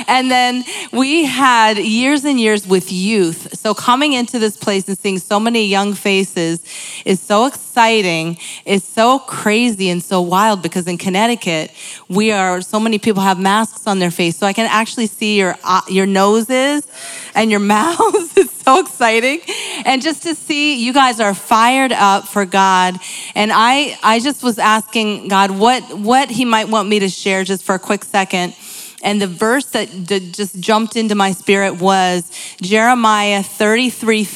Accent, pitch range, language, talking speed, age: American, 195-230 Hz, English, 175 wpm, 30-49